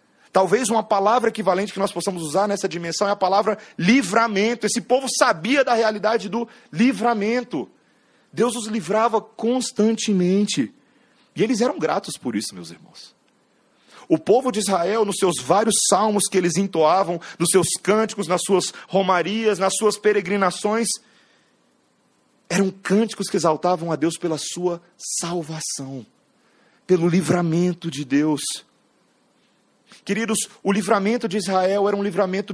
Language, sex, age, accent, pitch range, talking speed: Portuguese, male, 40-59, Brazilian, 195-265 Hz, 135 wpm